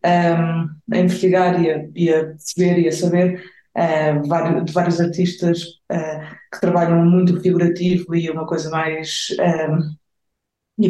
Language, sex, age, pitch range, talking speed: Portuguese, female, 20-39, 165-180 Hz, 150 wpm